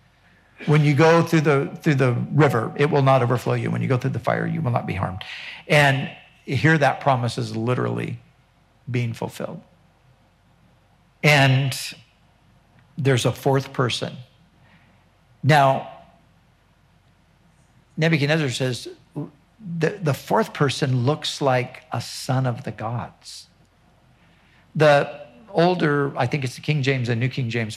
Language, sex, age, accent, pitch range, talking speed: English, male, 50-69, American, 120-150 Hz, 135 wpm